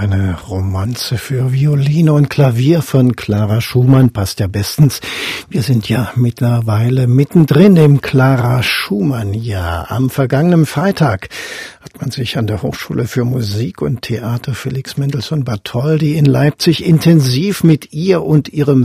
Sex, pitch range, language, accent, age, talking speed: male, 115-150 Hz, German, German, 60-79, 135 wpm